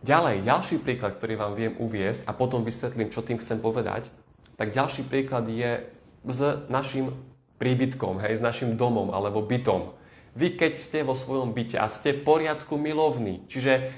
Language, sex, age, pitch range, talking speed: Slovak, male, 20-39, 110-140 Hz, 170 wpm